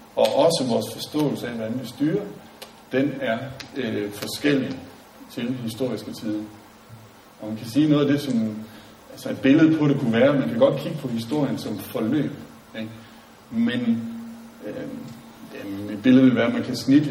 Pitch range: 115-145 Hz